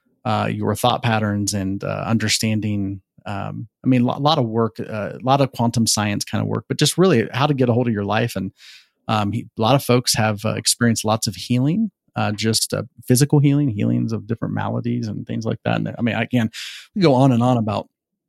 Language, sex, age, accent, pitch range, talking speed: English, male, 30-49, American, 105-125 Hz, 235 wpm